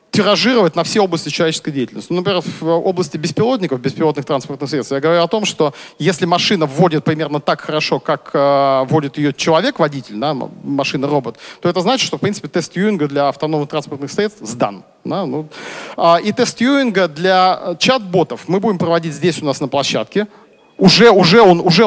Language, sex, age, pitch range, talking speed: Russian, male, 40-59, 150-190 Hz, 165 wpm